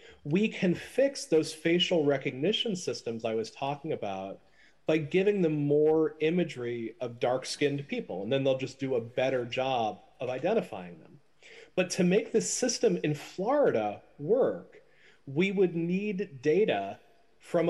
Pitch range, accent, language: 140-195 Hz, American, Greek